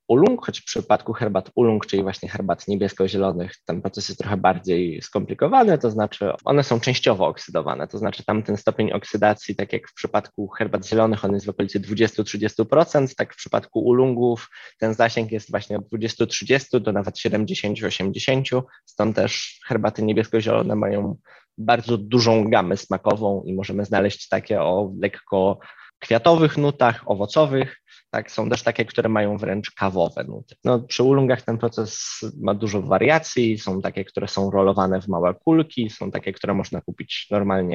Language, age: Polish, 20-39